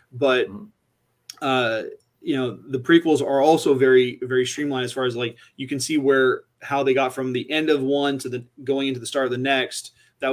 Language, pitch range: English, 125-145 Hz